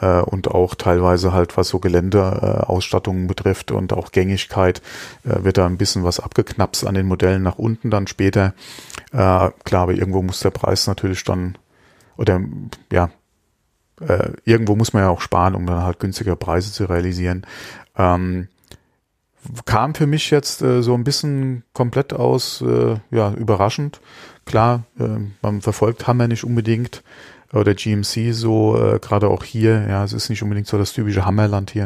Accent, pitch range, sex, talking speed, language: German, 95-115 Hz, male, 165 wpm, German